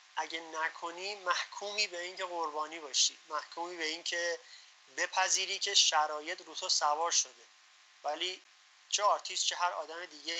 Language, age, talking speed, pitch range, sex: Persian, 30-49, 135 wpm, 145-180 Hz, male